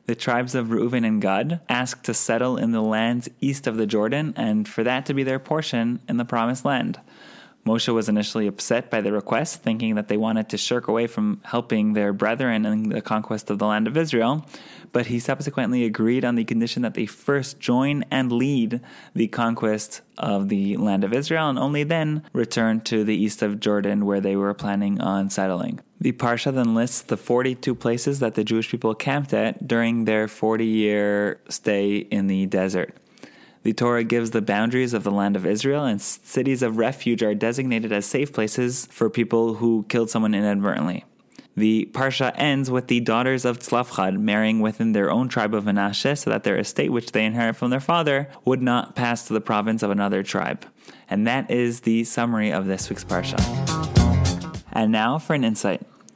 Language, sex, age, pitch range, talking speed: English, male, 20-39, 105-125 Hz, 195 wpm